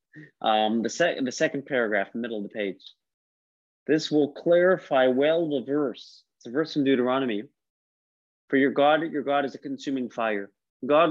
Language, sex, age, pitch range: English, male, 30-49, 115-155 Hz